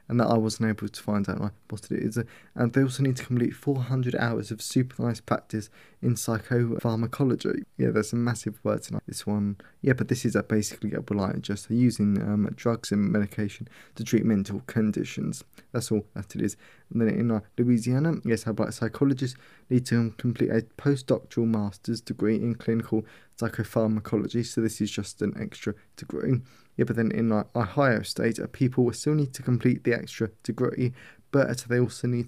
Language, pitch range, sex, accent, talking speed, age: English, 110-125 Hz, male, British, 190 wpm, 20-39